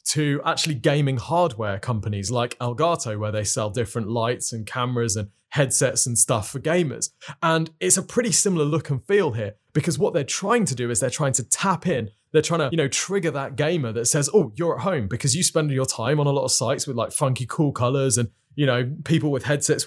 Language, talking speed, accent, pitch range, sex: English, 230 wpm, British, 120-155 Hz, male